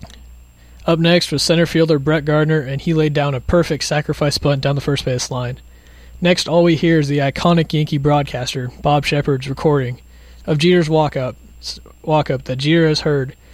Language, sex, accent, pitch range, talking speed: English, male, American, 120-160 Hz, 175 wpm